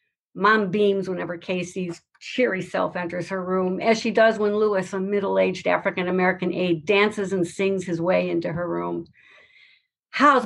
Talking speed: 155 wpm